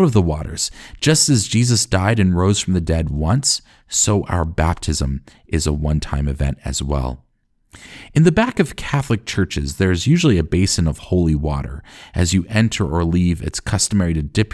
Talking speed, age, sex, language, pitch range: 185 wpm, 40-59, male, English, 80-105 Hz